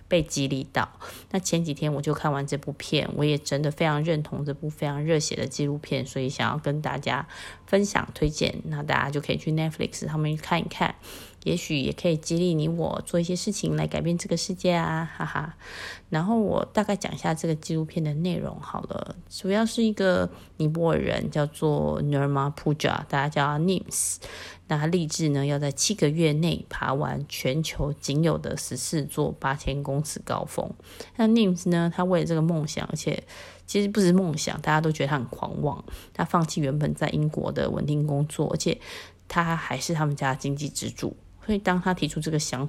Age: 20-39